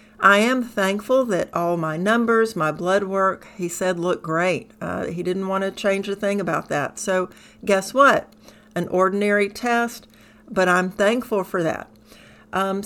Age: 60-79